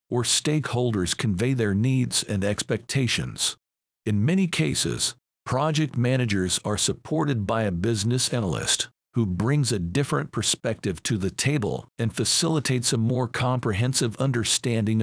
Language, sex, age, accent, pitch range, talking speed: English, male, 50-69, American, 100-130 Hz, 130 wpm